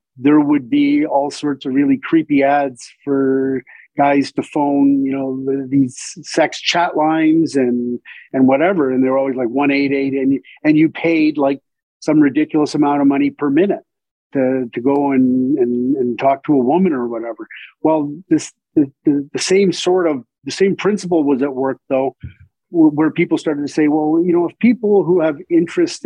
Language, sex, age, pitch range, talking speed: English, male, 50-69, 135-185 Hz, 185 wpm